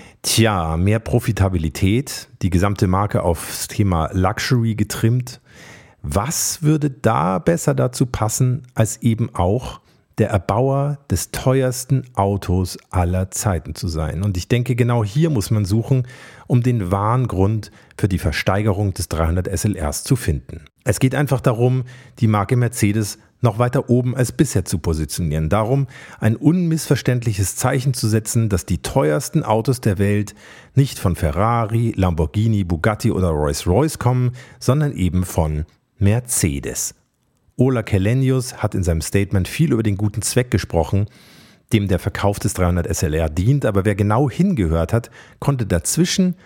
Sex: male